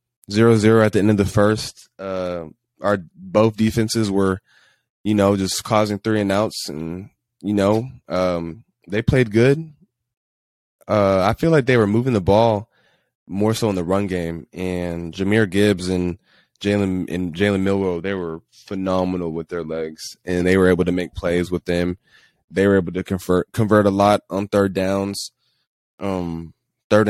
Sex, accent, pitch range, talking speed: male, American, 90-110 Hz, 170 wpm